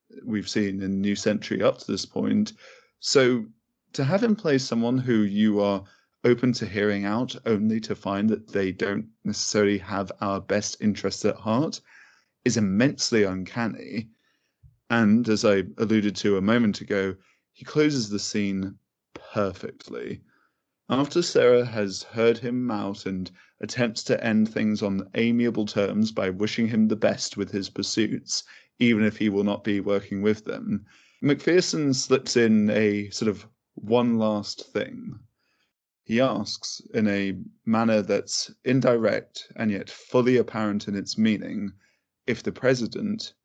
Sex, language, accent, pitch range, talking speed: male, English, British, 100-120 Hz, 150 wpm